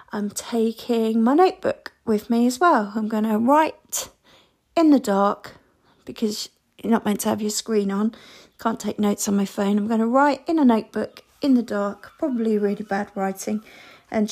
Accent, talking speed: British, 190 wpm